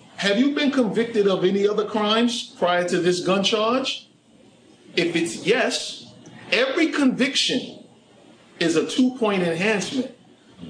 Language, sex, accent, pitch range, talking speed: English, male, American, 170-235 Hz, 125 wpm